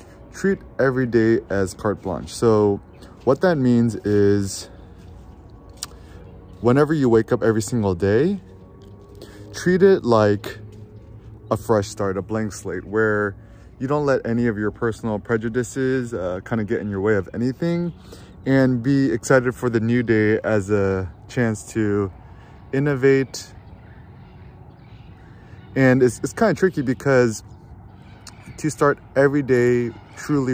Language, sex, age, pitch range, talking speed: English, male, 20-39, 95-120 Hz, 130 wpm